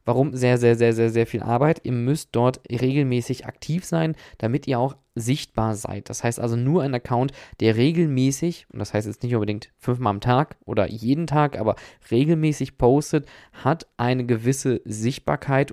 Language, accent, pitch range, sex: German, German, 115-135 Hz, male